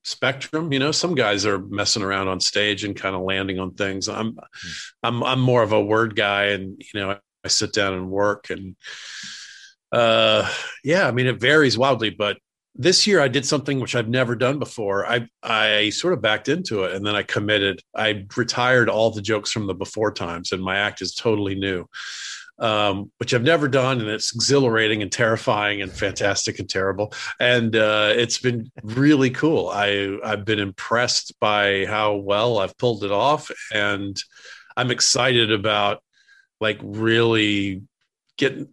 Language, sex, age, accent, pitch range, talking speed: English, male, 40-59, American, 100-125 Hz, 180 wpm